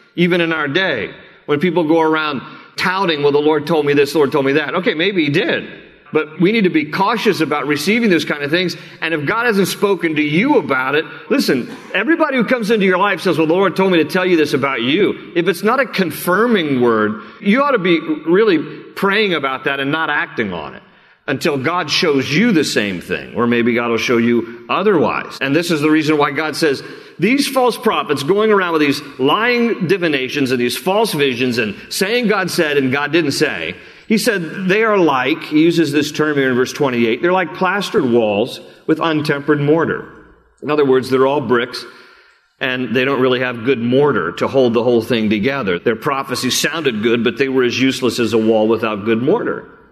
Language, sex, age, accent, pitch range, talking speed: English, male, 40-59, American, 130-190 Hz, 215 wpm